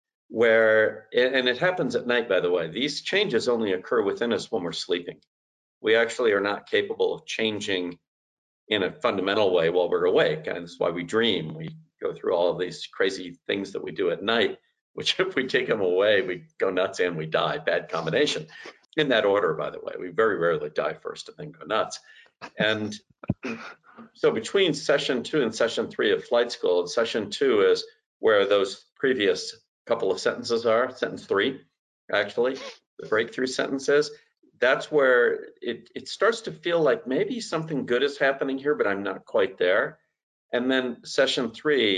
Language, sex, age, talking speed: English, male, 50-69, 185 wpm